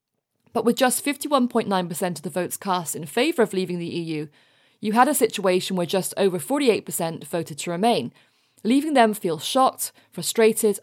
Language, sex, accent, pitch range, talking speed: English, female, British, 175-230 Hz, 165 wpm